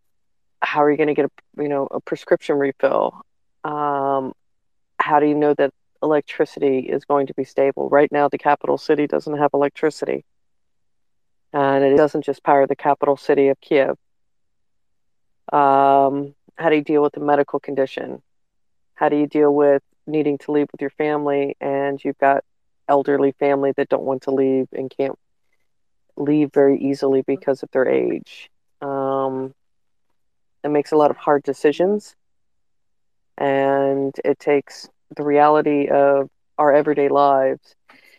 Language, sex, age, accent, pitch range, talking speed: English, female, 40-59, American, 135-150 Hz, 155 wpm